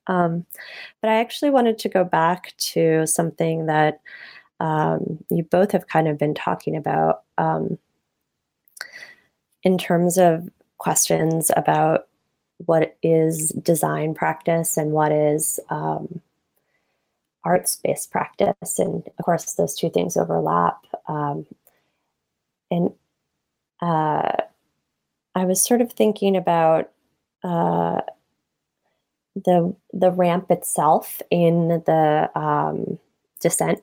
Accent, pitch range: American, 160-185 Hz